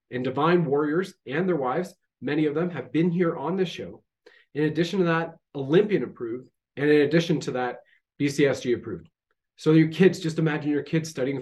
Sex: male